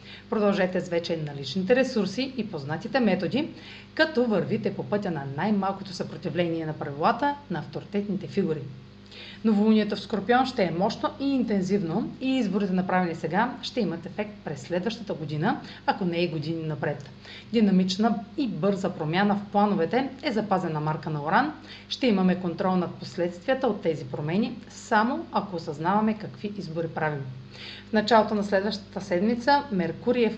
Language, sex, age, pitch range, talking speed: Bulgarian, female, 40-59, 170-220 Hz, 145 wpm